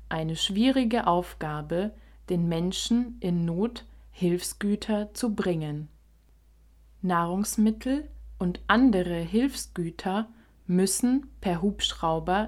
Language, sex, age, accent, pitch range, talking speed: German, female, 20-39, German, 165-210 Hz, 80 wpm